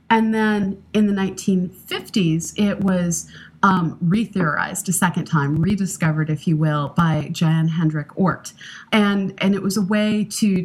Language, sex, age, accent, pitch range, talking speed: English, female, 30-49, American, 160-200 Hz, 150 wpm